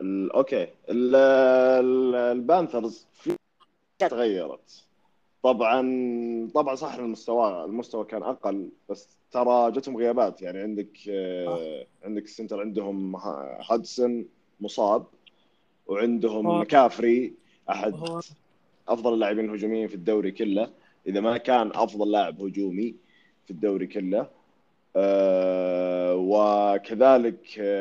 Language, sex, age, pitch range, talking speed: Arabic, male, 30-49, 95-120 Hz, 85 wpm